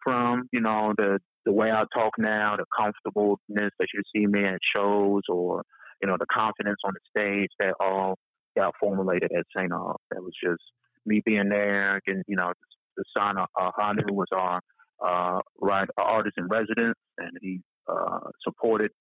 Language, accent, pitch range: English, American, 95-110 Hz